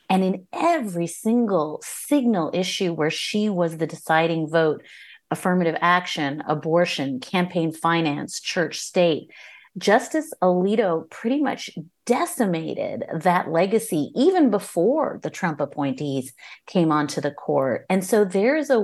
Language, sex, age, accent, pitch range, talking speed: English, female, 30-49, American, 160-200 Hz, 125 wpm